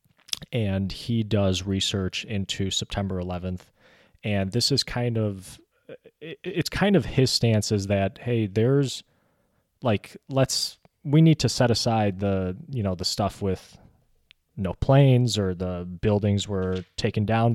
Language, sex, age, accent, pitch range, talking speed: English, male, 30-49, American, 100-120 Hz, 145 wpm